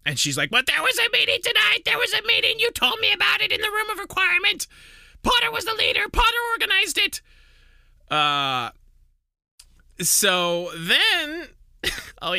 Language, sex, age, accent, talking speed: English, male, 20-39, American, 165 wpm